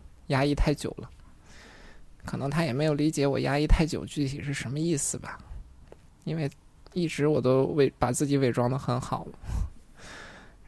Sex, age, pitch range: male, 20-39, 100-145 Hz